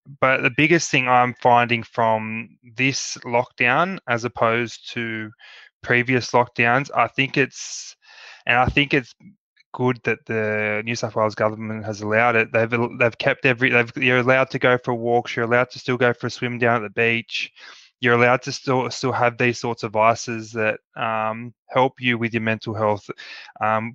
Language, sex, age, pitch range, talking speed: English, male, 20-39, 110-125 Hz, 180 wpm